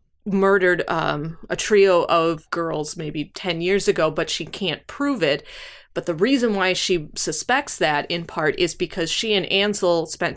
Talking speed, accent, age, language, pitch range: 175 wpm, American, 20-39, English, 165-205 Hz